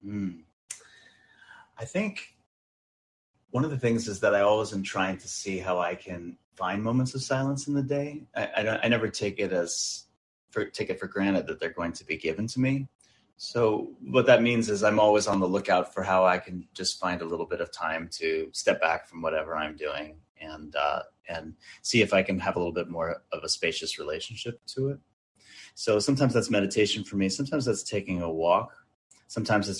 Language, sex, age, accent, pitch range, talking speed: English, male, 30-49, American, 90-115 Hz, 210 wpm